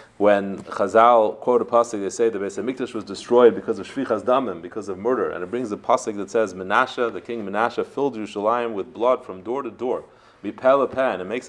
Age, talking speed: 30-49, 210 wpm